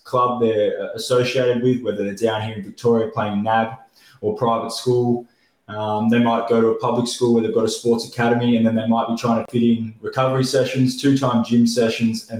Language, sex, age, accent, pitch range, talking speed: English, male, 20-39, Australian, 115-130 Hz, 215 wpm